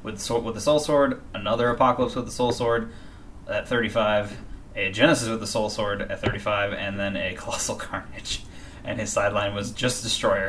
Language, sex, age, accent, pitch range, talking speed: English, male, 20-39, American, 100-120 Hz, 175 wpm